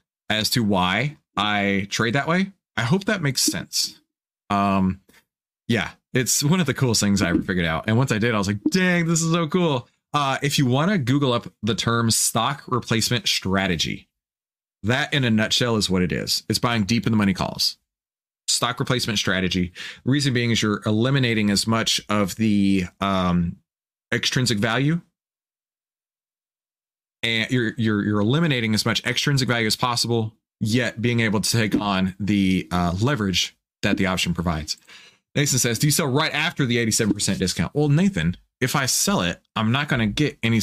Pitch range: 100-135 Hz